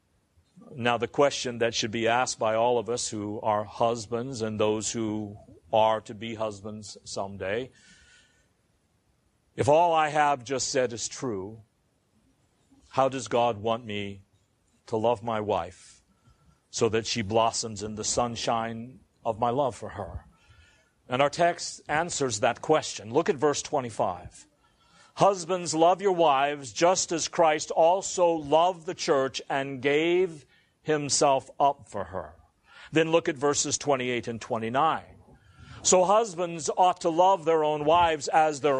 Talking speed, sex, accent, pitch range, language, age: 145 wpm, male, American, 115-165 Hz, English, 50-69